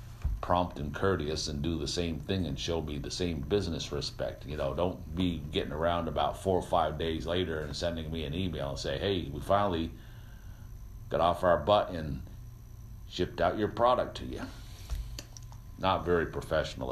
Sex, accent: male, American